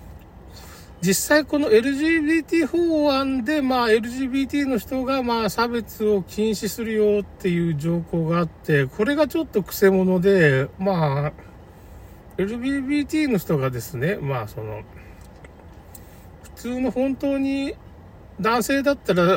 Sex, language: male, Japanese